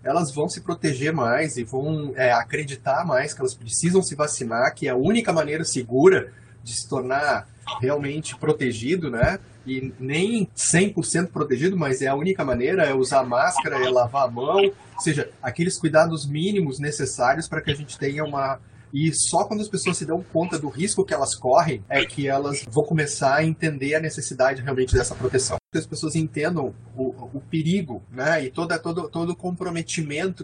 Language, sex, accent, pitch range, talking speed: Portuguese, male, Brazilian, 130-170 Hz, 185 wpm